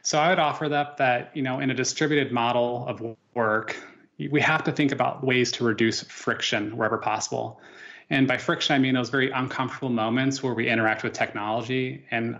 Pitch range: 110-135 Hz